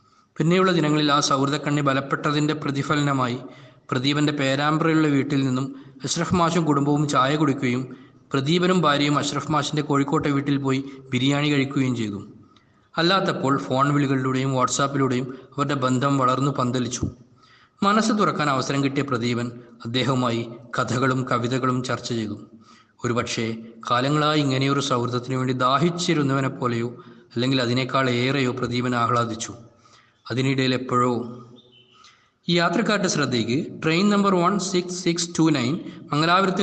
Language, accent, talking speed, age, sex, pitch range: Malayalam, native, 110 wpm, 20-39, male, 125-150 Hz